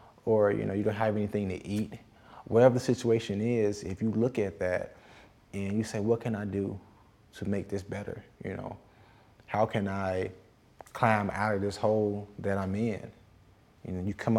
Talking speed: 190 wpm